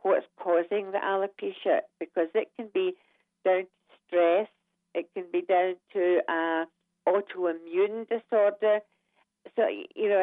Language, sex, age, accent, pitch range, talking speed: English, female, 50-69, British, 175-210 Hz, 135 wpm